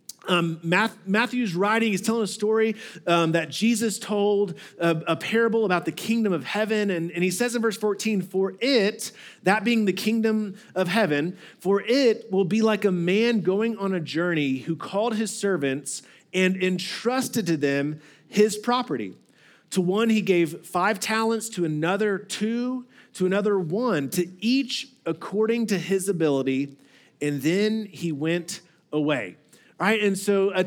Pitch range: 170-220 Hz